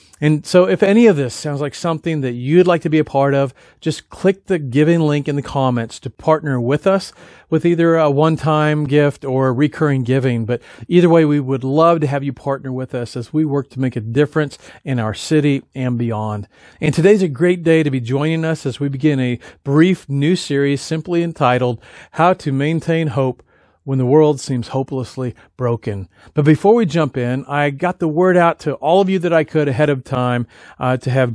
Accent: American